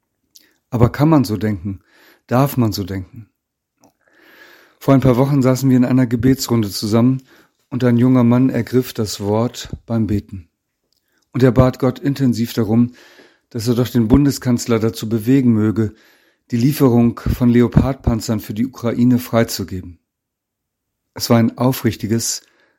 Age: 40-59